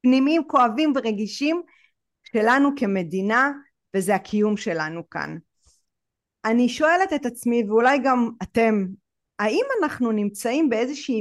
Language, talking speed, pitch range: Hebrew, 105 wpm, 195-270 Hz